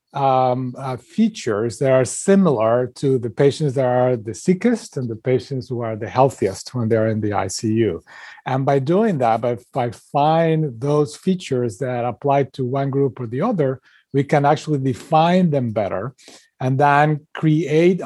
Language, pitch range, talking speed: English, 120-145 Hz, 170 wpm